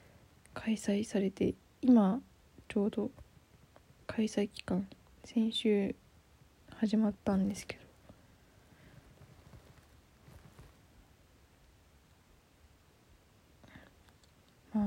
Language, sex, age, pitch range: Japanese, female, 20-39, 180-225 Hz